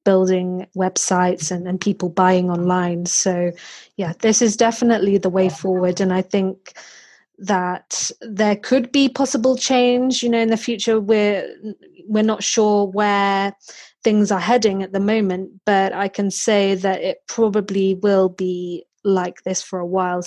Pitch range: 180-205 Hz